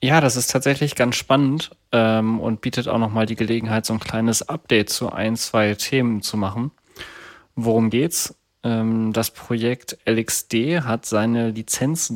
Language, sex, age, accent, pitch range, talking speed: German, male, 30-49, German, 110-125 Hz, 165 wpm